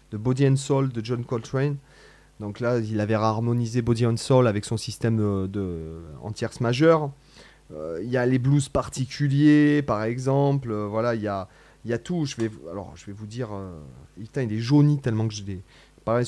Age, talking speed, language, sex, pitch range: 30-49, 220 wpm, French, male, 110-135 Hz